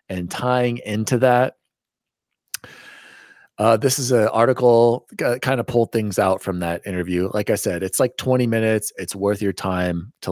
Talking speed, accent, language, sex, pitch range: 175 wpm, American, English, male, 95-135 Hz